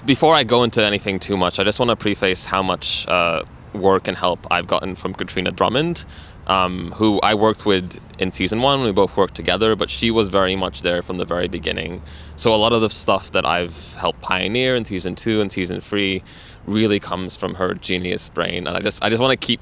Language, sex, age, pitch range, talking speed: English, male, 20-39, 90-110 Hz, 230 wpm